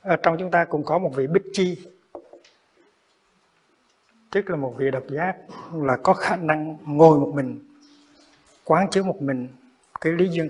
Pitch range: 135-170 Hz